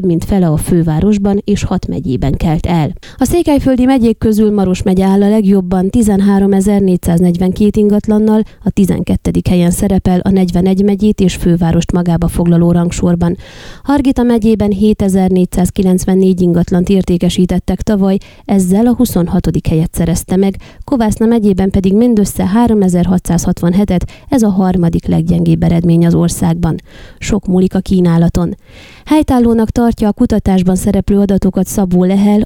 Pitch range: 175-210 Hz